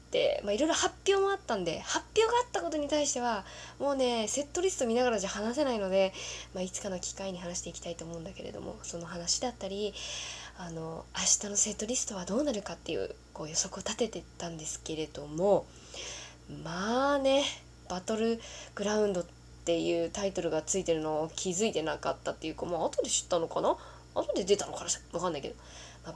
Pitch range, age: 165-245 Hz, 20-39